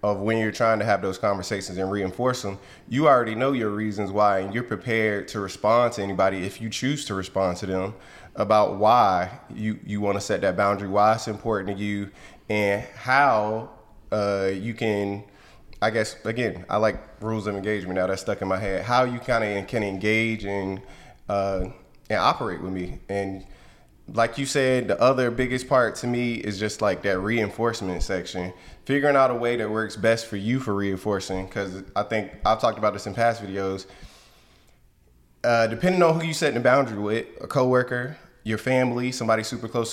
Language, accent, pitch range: English, American, 100-120 Hz